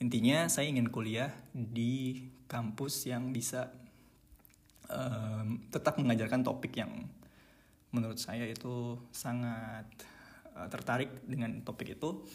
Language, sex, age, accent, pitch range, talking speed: Indonesian, male, 20-39, native, 110-125 Hz, 105 wpm